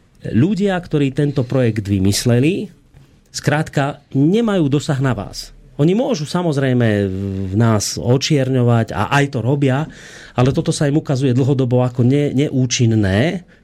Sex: male